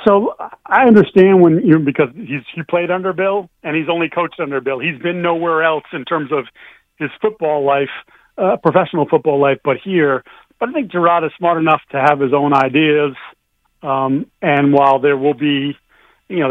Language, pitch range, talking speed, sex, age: English, 140-165 Hz, 190 wpm, male, 40-59